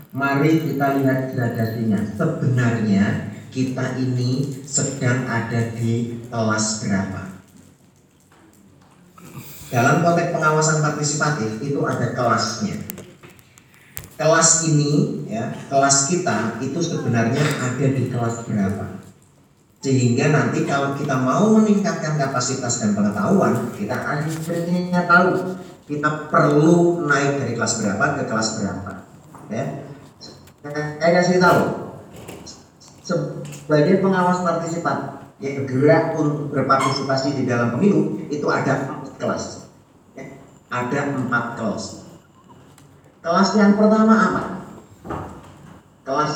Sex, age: male, 40-59